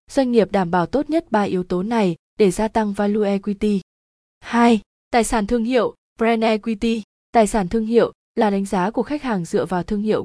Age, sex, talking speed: 20-39, female, 210 wpm